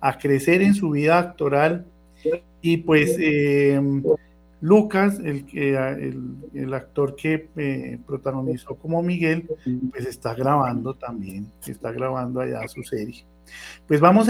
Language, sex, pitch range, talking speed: Spanish, male, 125-165 Hz, 120 wpm